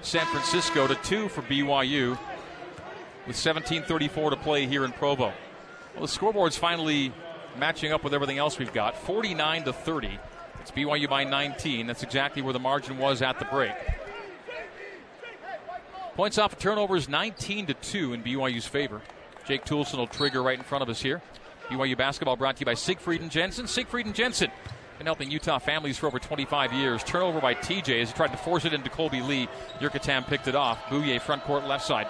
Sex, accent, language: male, American, English